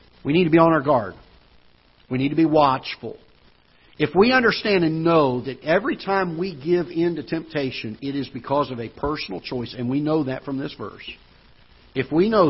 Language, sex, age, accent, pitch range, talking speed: English, male, 50-69, American, 120-160 Hz, 200 wpm